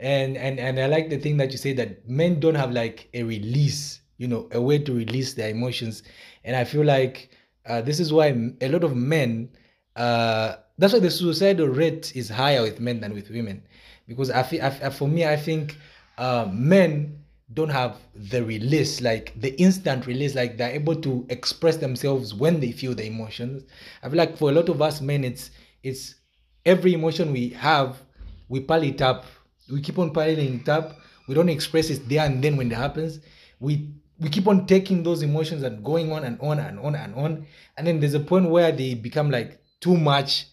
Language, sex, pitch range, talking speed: English, male, 120-155 Hz, 210 wpm